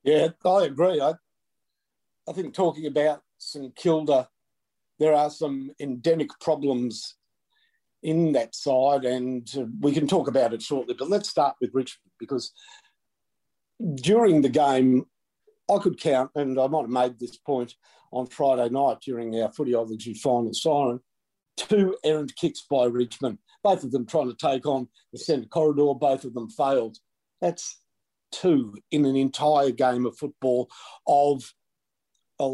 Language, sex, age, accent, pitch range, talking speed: English, male, 50-69, Australian, 125-155 Hz, 150 wpm